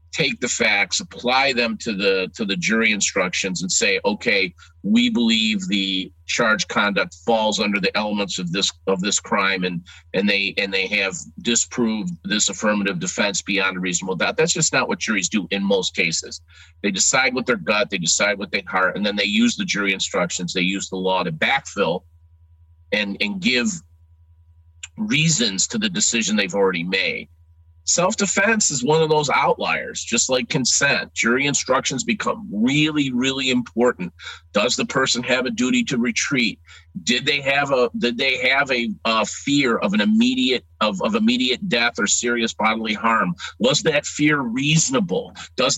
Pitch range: 95-155 Hz